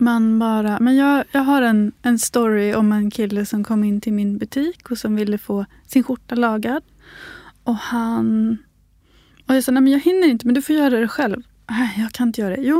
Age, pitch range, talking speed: 20-39, 220-280 Hz, 225 wpm